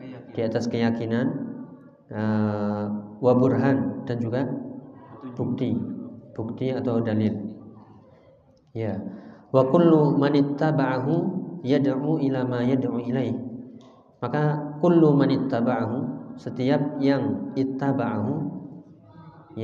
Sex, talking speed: male, 80 wpm